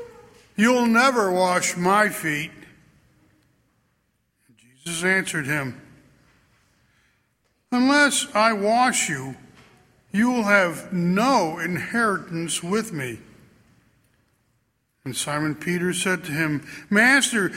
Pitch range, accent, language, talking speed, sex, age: 145-225 Hz, American, English, 90 wpm, male, 60-79